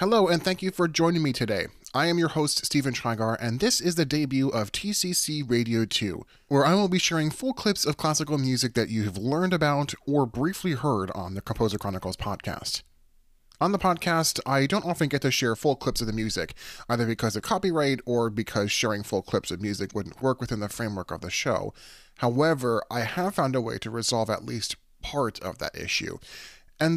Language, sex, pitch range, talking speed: English, male, 105-150 Hz, 210 wpm